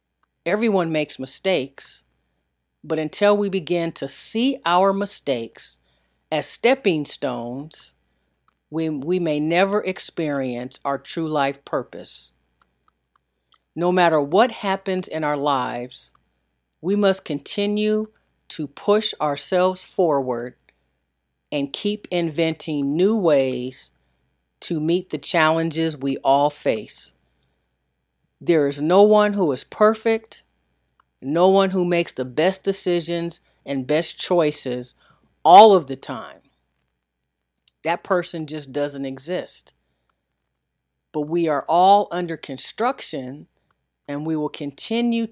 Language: English